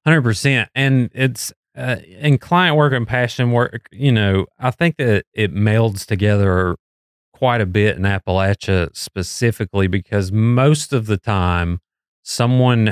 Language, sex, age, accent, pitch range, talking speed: English, male, 30-49, American, 95-115 Hz, 145 wpm